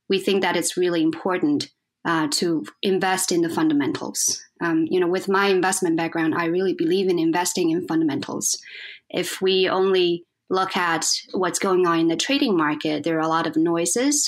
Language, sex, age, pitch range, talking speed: English, female, 20-39, 160-190 Hz, 175 wpm